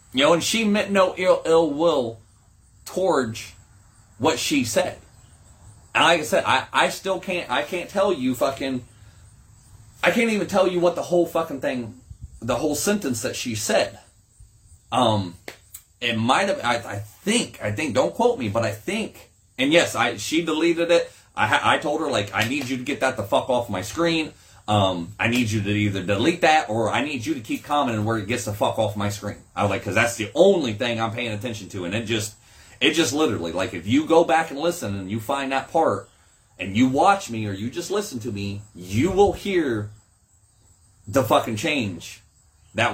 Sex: male